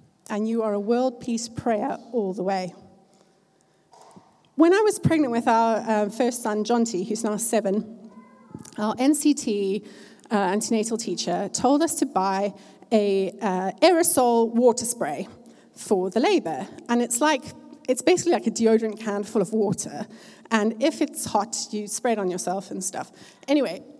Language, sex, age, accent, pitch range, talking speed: English, female, 30-49, British, 210-275 Hz, 155 wpm